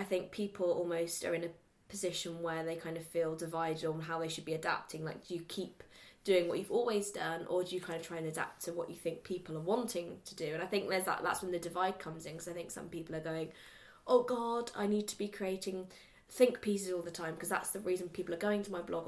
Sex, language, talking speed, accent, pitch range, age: female, English, 270 wpm, British, 165-185 Hz, 20-39